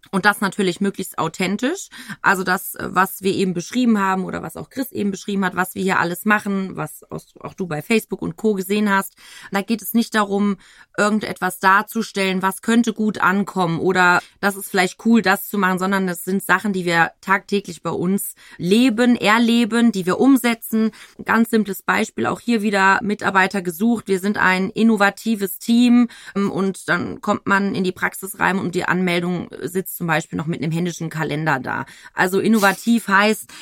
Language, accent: German, German